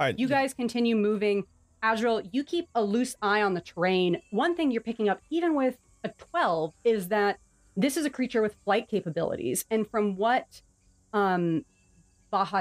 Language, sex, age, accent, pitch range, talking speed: English, female, 30-49, American, 180-220 Hz, 170 wpm